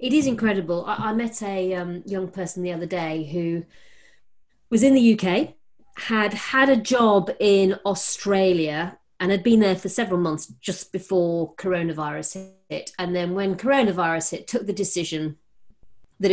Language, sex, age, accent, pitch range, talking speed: English, female, 30-49, British, 175-225 Hz, 160 wpm